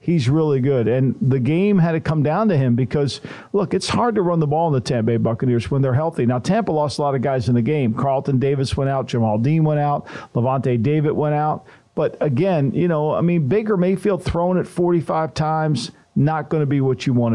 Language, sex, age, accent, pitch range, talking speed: English, male, 50-69, American, 135-175 Hz, 240 wpm